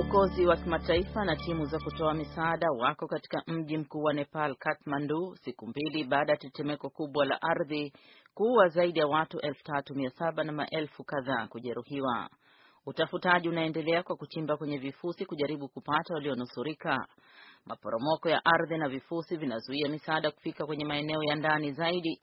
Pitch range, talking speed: 145-165 Hz, 145 wpm